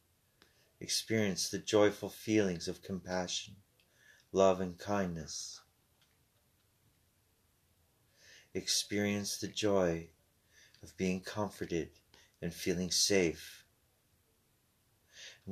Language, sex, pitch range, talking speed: English, male, 95-110 Hz, 75 wpm